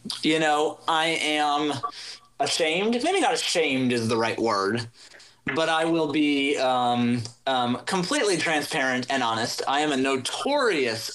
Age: 30-49